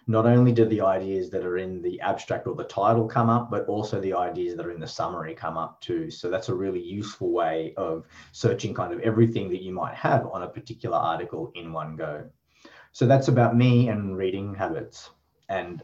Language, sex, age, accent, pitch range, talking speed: English, male, 30-49, Australian, 95-125 Hz, 215 wpm